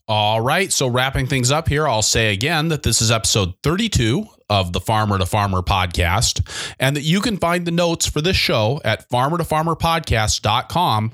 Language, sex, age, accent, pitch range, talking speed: English, male, 30-49, American, 110-150 Hz, 180 wpm